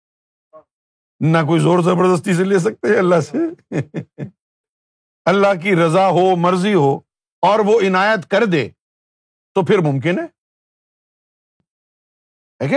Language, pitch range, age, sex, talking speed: Urdu, 150-200 Hz, 50-69, male, 115 wpm